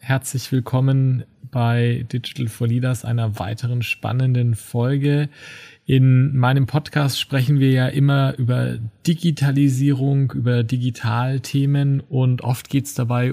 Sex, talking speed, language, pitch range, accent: male, 115 wpm, German, 120-135 Hz, German